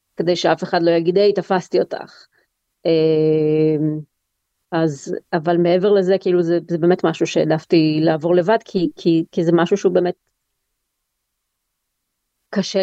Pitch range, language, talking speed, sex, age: 155-190 Hz, Hebrew, 130 wpm, female, 30-49